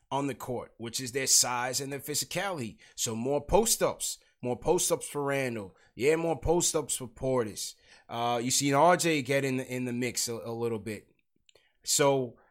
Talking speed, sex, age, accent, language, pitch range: 180 wpm, male, 20-39, American, English, 115-145 Hz